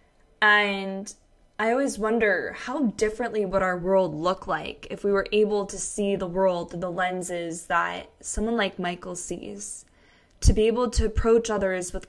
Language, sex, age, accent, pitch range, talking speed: English, female, 10-29, American, 185-220 Hz, 170 wpm